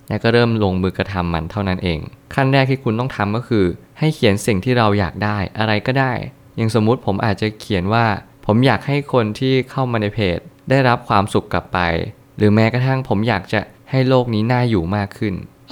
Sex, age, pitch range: male, 20-39, 95-120 Hz